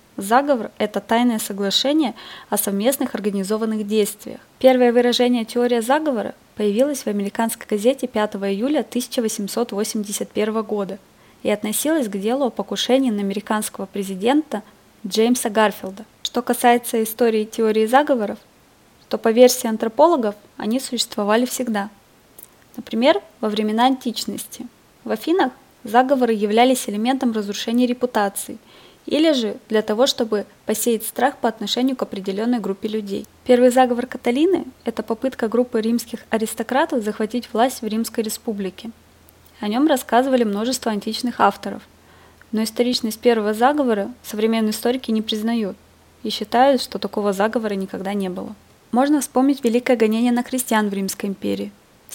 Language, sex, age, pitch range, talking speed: Russian, female, 20-39, 215-250 Hz, 130 wpm